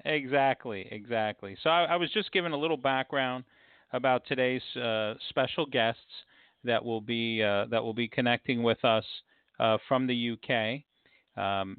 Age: 40-59